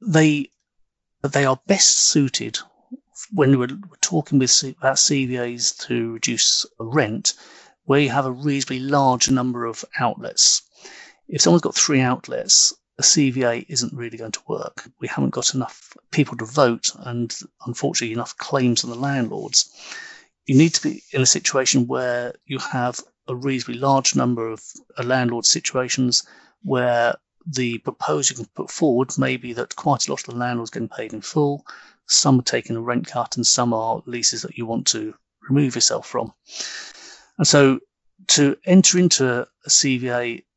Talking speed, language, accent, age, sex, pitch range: 165 wpm, English, British, 40-59, male, 120-150 Hz